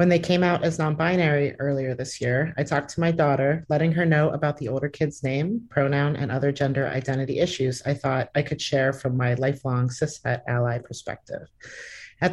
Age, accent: 30-49, American